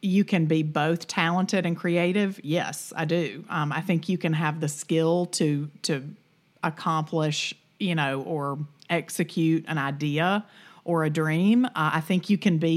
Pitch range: 155-185 Hz